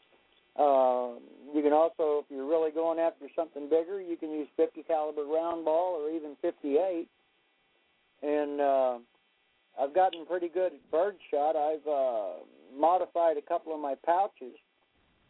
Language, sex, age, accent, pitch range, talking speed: English, male, 50-69, American, 140-170 Hz, 150 wpm